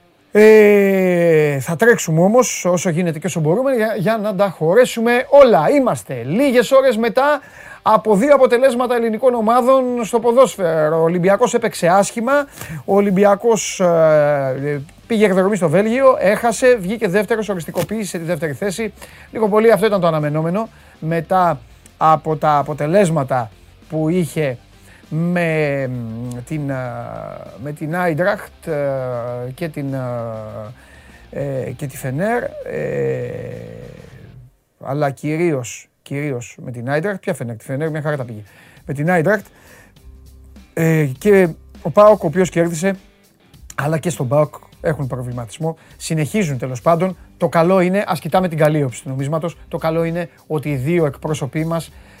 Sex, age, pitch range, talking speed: male, 30-49, 145-210 Hz, 130 wpm